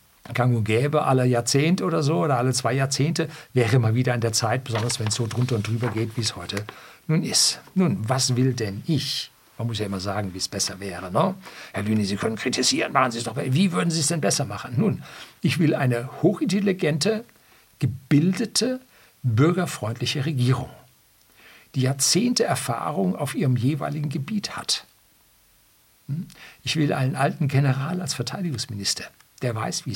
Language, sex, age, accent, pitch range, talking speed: German, male, 60-79, German, 115-160 Hz, 170 wpm